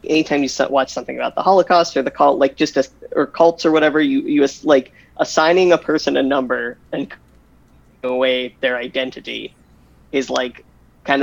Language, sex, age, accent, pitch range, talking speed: English, male, 20-39, American, 130-170 Hz, 175 wpm